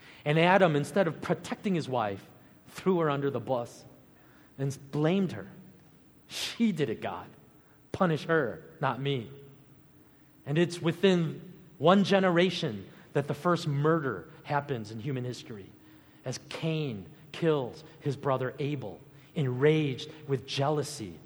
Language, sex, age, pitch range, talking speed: English, male, 40-59, 135-175 Hz, 125 wpm